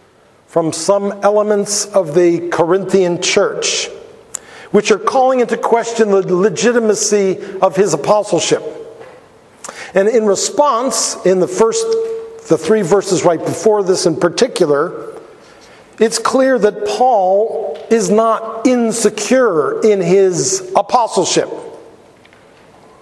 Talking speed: 105 wpm